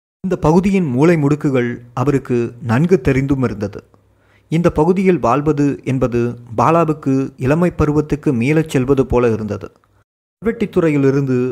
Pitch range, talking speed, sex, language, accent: 115-150 Hz, 100 wpm, male, Tamil, native